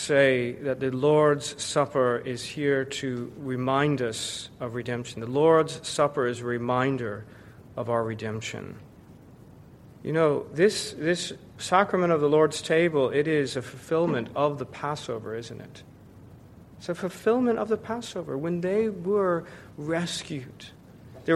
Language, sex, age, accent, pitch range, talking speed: English, male, 40-59, American, 130-170 Hz, 140 wpm